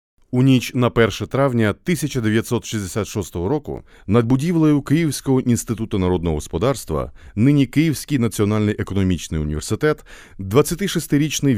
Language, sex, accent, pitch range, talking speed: Ukrainian, male, native, 90-150 Hz, 100 wpm